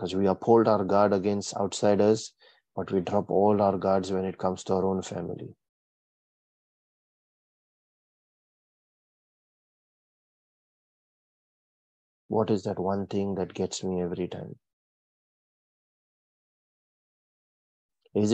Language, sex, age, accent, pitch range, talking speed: English, male, 30-49, Indian, 95-110 Hz, 100 wpm